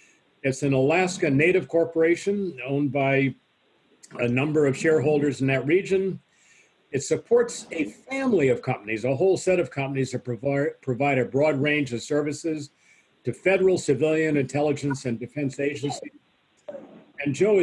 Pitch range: 135-170 Hz